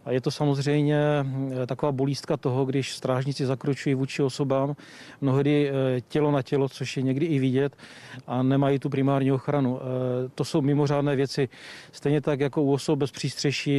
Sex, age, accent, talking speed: male, 40-59, native, 160 wpm